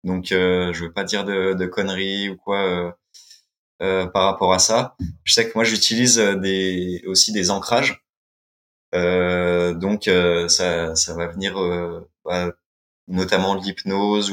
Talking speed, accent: 155 wpm, French